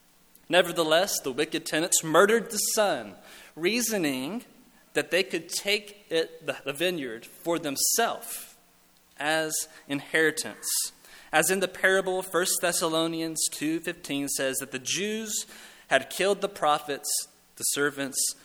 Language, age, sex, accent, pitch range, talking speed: English, 20-39, male, American, 135-195 Hz, 115 wpm